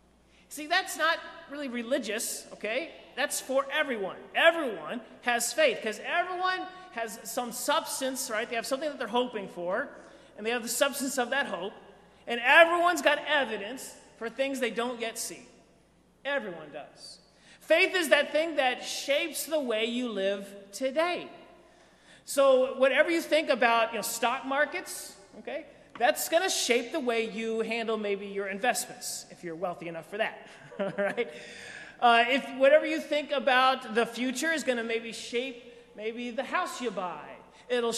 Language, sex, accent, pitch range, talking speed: English, male, American, 225-295 Hz, 165 wpm